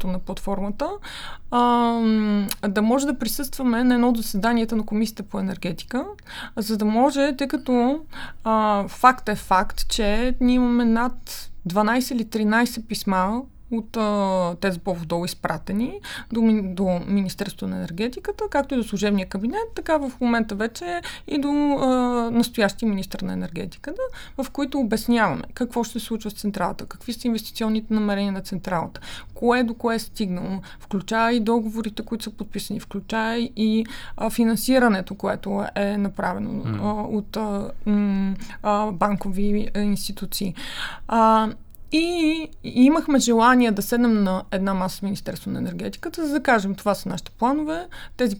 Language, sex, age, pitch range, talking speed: Bulgarian, female, 20-39, 200-245 Hz, 145 wpm